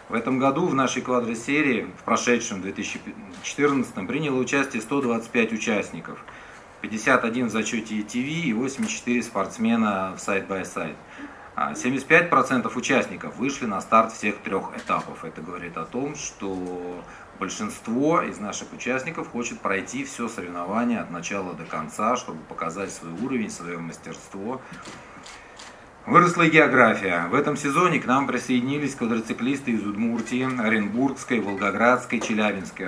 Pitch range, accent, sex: 105-135 Hz, native, male